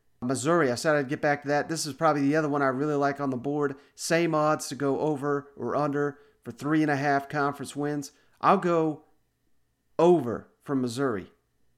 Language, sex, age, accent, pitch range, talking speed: English, male, 40-59, American, 135-155 Hz, 185 wpm